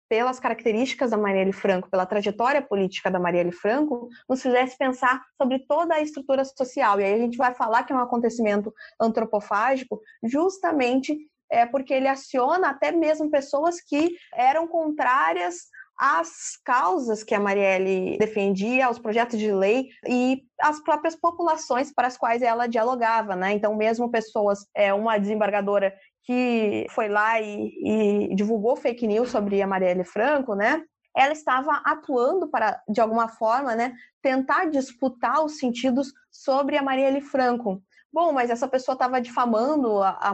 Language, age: Portuguese, 20-39